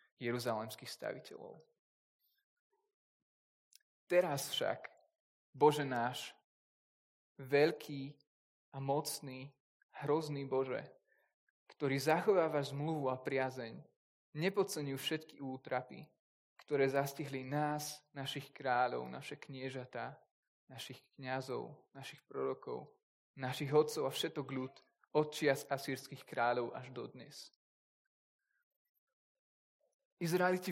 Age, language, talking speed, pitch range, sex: 20-39, Slovak, 80 wpm, 130-165 Hz, male